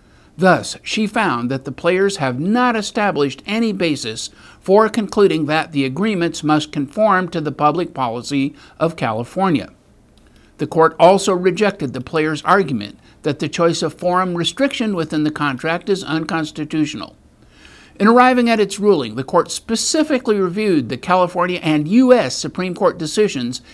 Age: 50-69